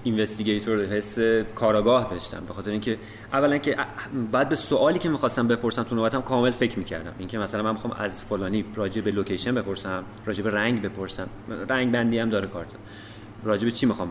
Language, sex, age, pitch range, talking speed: Persian, male, 30-49, 105-125 Hz, 185 wpm